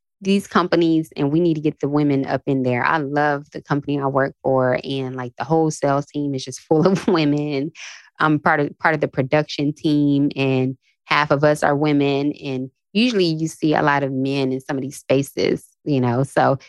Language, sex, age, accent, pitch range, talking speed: English, female, 20-39, American, 140-190 Hz, 210 wpm